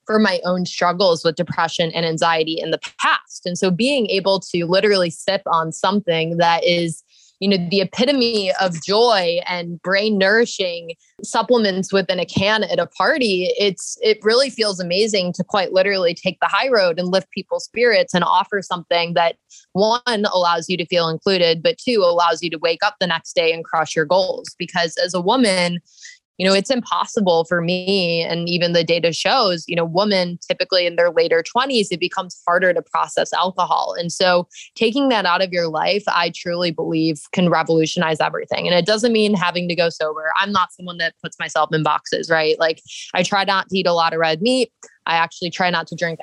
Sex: female